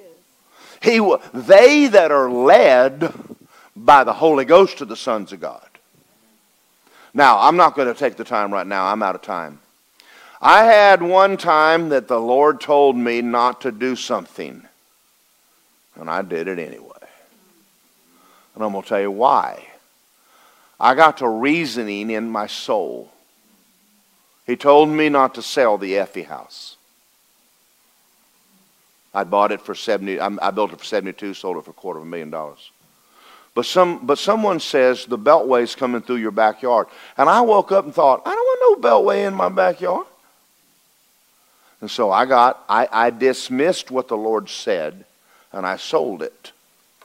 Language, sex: English, male